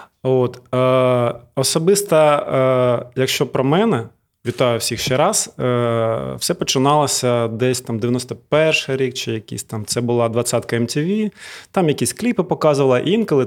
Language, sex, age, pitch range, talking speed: Ukrainian, male, 20-39, 120-140 Hz, 120 wpm